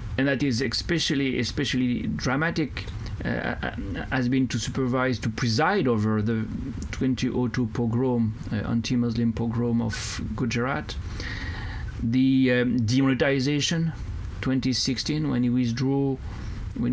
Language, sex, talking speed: Czech, male, 105 wpm